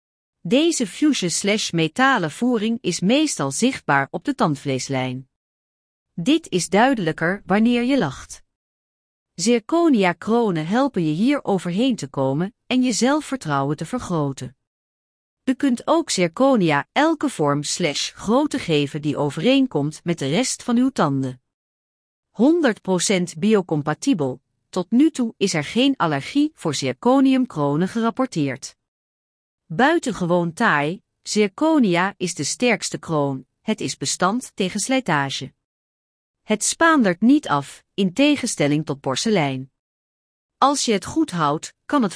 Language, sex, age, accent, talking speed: Dutch, female, 40-59, Dutch, 125 wpm